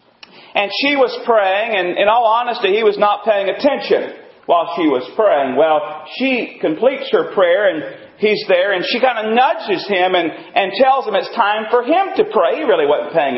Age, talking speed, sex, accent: 40-59, 200 wpm, male, American